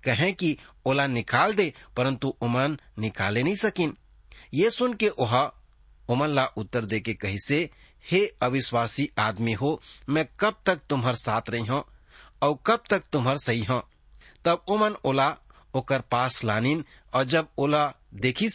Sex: male